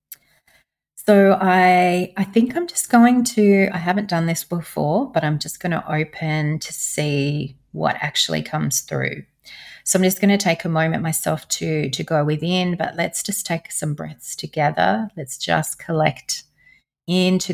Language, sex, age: English, female, 30-49